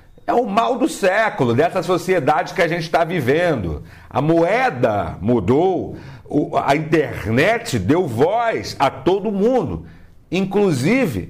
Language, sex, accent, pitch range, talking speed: Portuguese, male, Brazilian, 115-175 Hz, 120 wpm